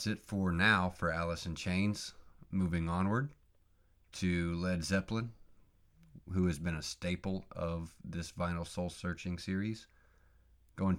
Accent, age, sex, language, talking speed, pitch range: American, 30-49, male, English, 130 wpm, 85-95 Hz